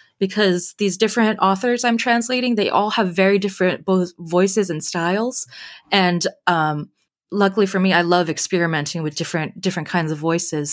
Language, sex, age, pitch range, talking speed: English, female, 20-39, 170-215 Hz, 160 wpm